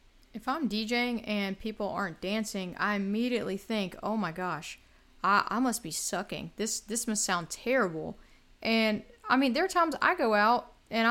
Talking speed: 180 wpm